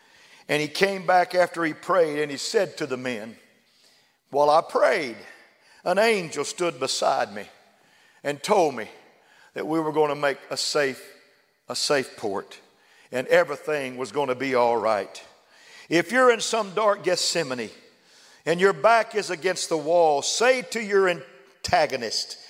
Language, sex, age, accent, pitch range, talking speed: English, male, 50-69, American, 155-190 Hz, 160 wpm